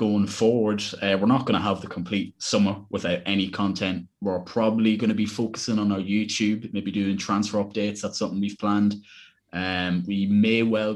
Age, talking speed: 20-39, 190 wpm